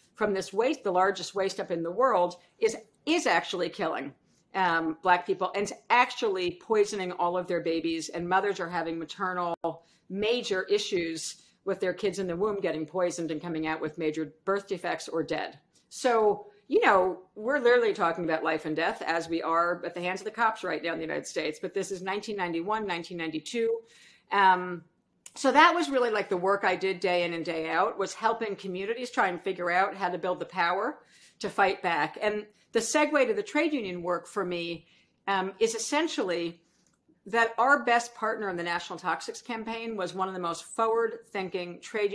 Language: English